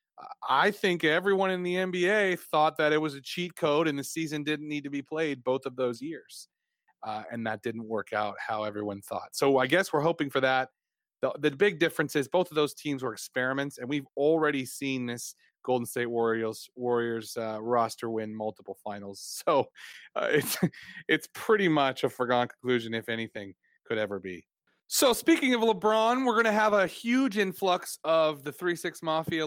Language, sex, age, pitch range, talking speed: English, male, 30-49, 120-180 Hz, 195 wpm